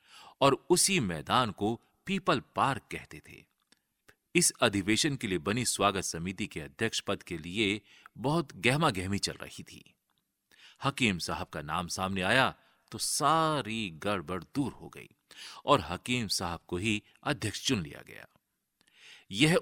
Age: 40-59